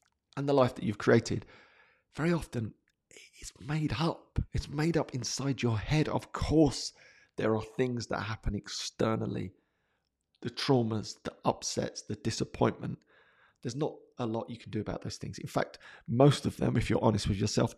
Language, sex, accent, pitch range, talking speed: English, male, British, 105-140 Hz, 170 wpm